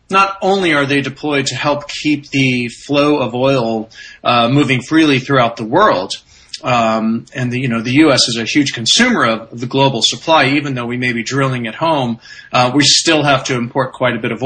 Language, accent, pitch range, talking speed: English, American, 120-140 Hz, 210 wpm